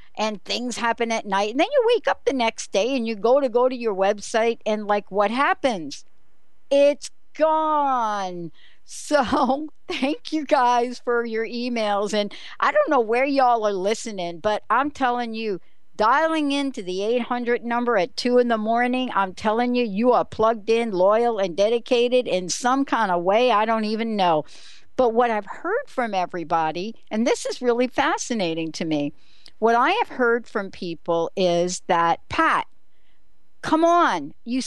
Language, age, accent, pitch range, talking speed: English, 60-79, American, 205-285 Hz, 175 wpm